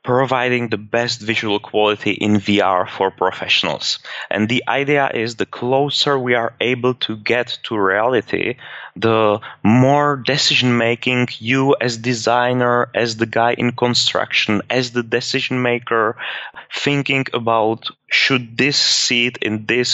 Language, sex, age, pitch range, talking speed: English, male, 20-39, 105-125 Hz, 135 wpm